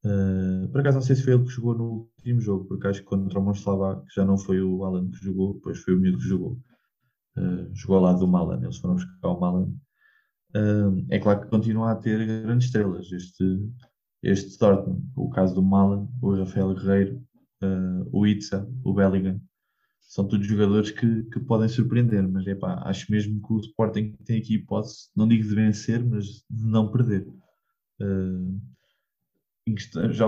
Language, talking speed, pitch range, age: Portuguese, 185 wpm, 95-115 Hz, 20-39